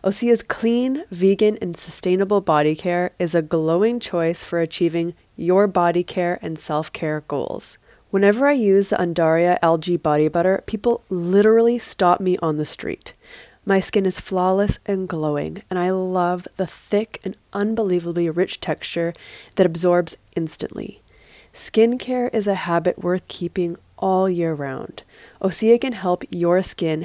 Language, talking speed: English, 150 wpm